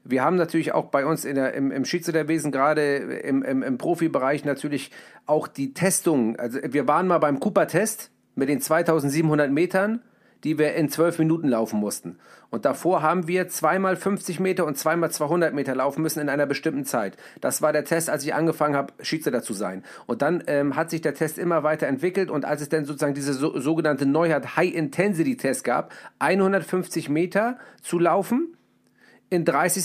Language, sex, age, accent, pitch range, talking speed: German, male, 40-59, German, 150-180 Hz, 185 wpm